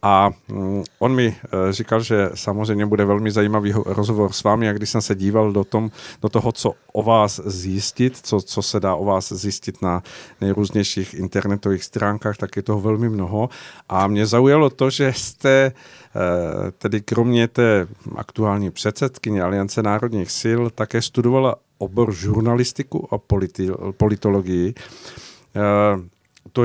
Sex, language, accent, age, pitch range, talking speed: male, Czech, native, 50-69, 100-120 Hz, 140 wpm